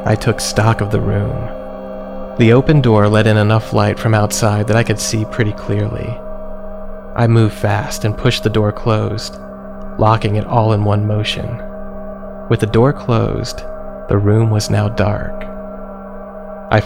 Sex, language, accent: male, English, American